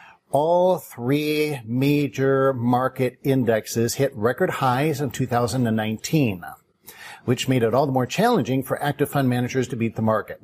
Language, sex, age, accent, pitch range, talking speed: English, male, 50-69, American, 115-145 Hz, 145 wpm